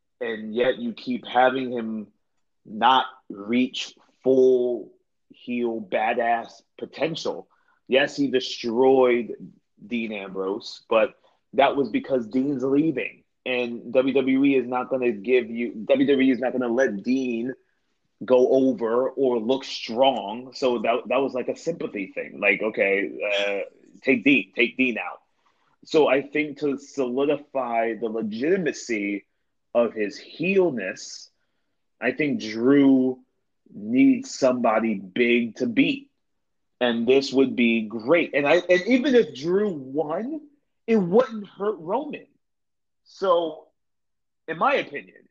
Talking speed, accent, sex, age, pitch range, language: 130 wpm, American, male, 30-49, 115-160 Hz, English